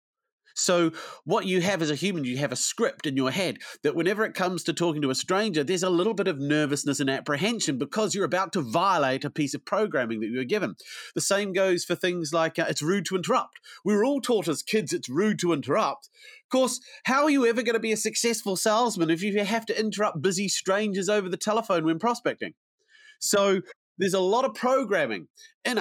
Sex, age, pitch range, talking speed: male, 30-49, 165-215 Hz, 225 wpm